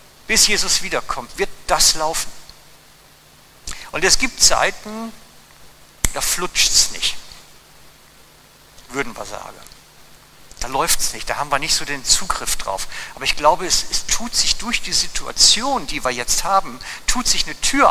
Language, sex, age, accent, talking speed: German, male, 60-79, German, 160 wpm